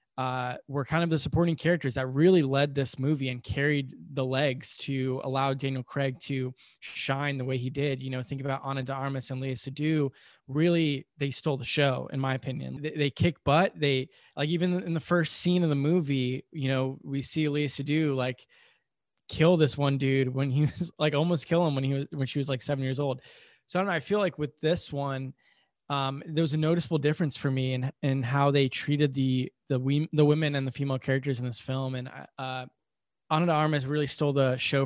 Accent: American